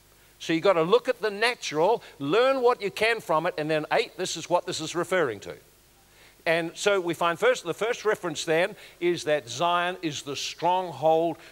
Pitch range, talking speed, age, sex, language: 150-185 Hz, 205 wpm, 60-79, male, English